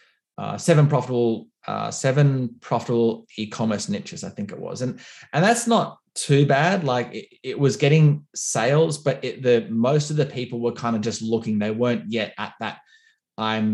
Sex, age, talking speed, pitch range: male, 20-39, 180 wpm, 110-140 Hz